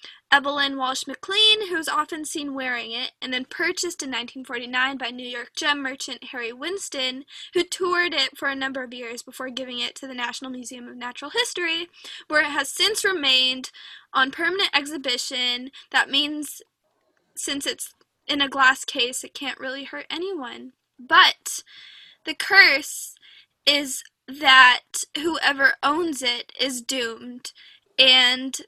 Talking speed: 145 wpm